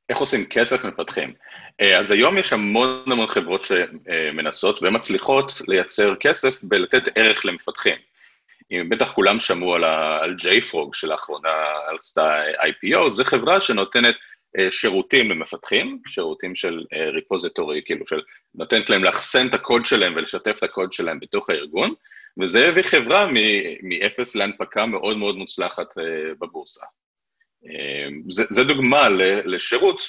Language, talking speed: Hebrew, 120 wpm